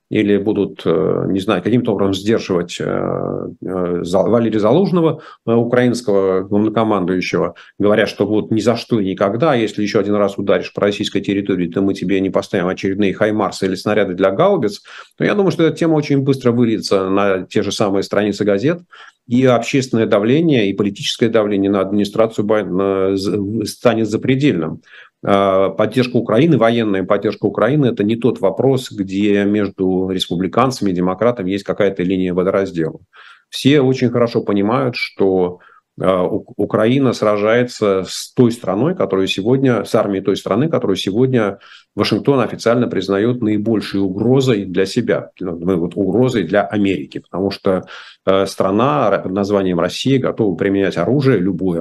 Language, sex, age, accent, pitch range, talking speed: Russian, male, 40-59, native, 95-115 Hz, 135 wpm